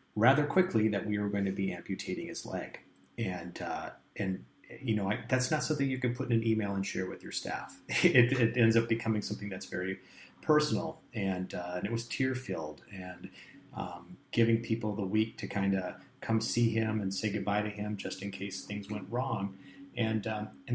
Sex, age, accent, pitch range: male, 30-49, American, 100-120 Hz